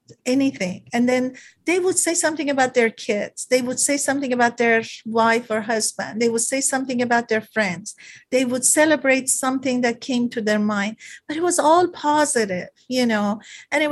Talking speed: 190 wpm